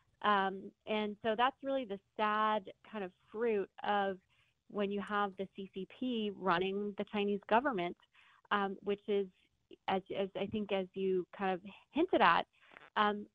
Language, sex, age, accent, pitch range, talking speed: English, female, 20-39, American, 185-210 Hz, 155 wpm